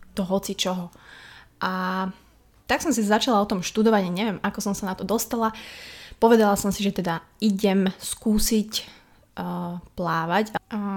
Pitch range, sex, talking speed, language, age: 185-220 Hz, female, 155 wpm, Slovak, 20-39